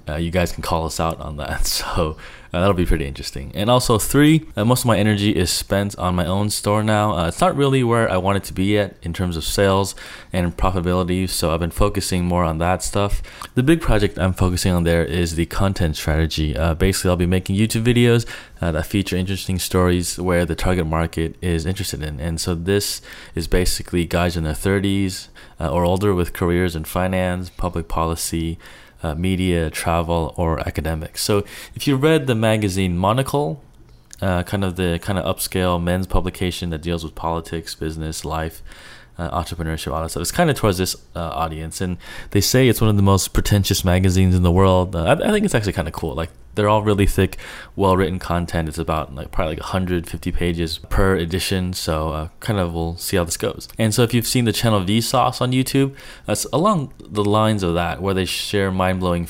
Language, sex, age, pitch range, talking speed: English, male, 20-39, 85-100 Hz, 210 wpm